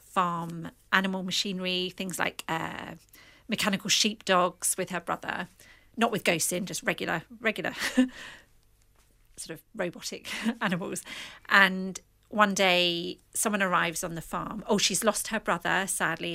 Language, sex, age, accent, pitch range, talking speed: English, female, 40-59, British, 170-200 Hz, 135 wpm